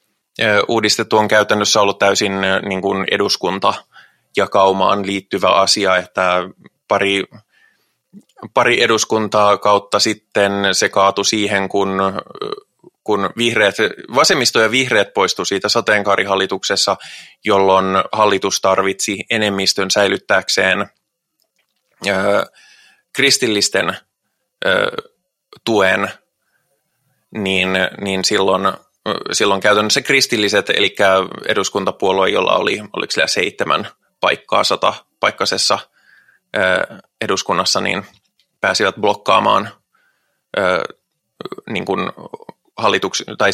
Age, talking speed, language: 20-39, 75 wpm, Finnish